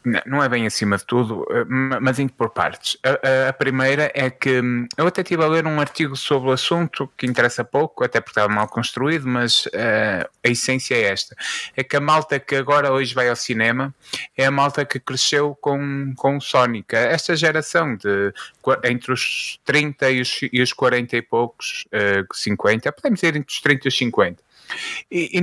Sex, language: male, Portuguese